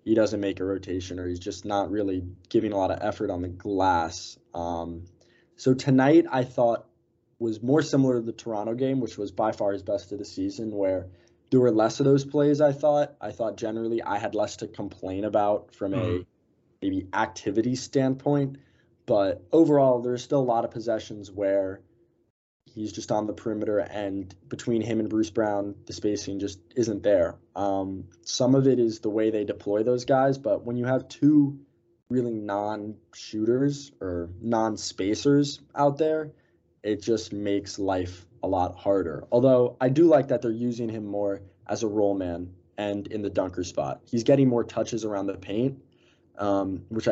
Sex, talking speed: male, 180 wpm